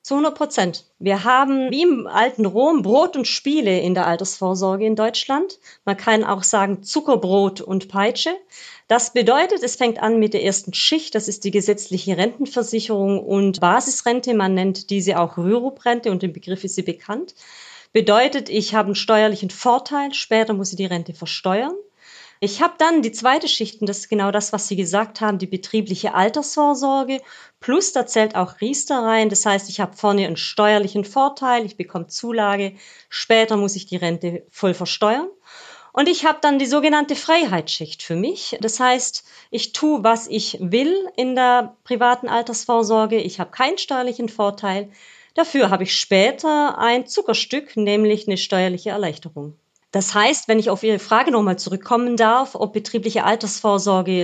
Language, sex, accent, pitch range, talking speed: German, female, German, 195-265 Hz, 170 wpm